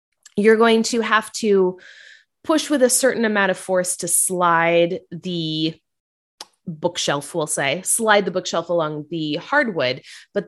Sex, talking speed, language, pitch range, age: female, 145 wpm, English, 165-215 Hz, 20-39